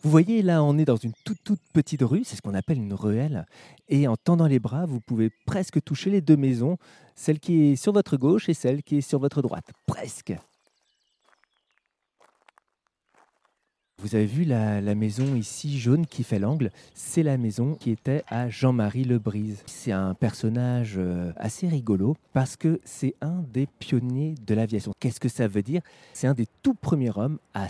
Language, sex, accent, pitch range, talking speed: French, male, French, 115-155 Hz, 190 wpm